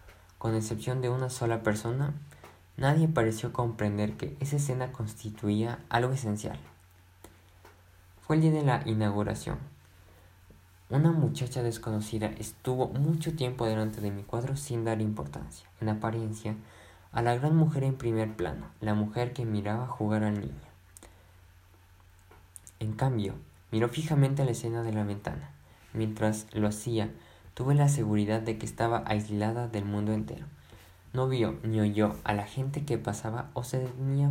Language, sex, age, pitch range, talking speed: Spanish, male, 20-39, 95-125 Hz, 150 wpm